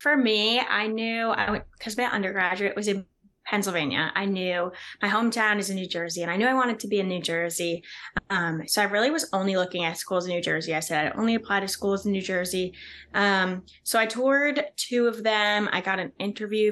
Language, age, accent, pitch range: English, 10-29, American, 175-210 Hz